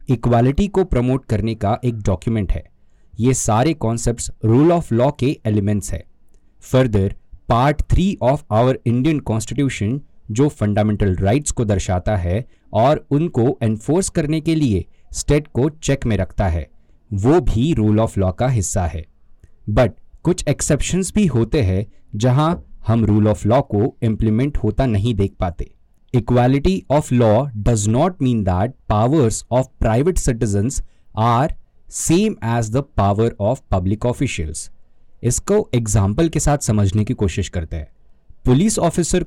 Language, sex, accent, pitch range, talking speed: Hindi, male, native, 105-135 Hz, 145 wpm